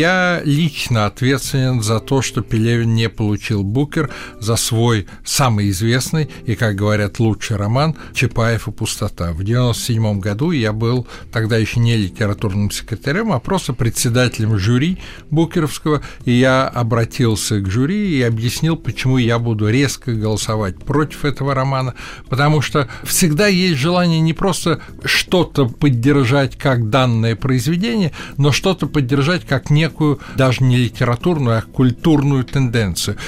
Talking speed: 135 wpm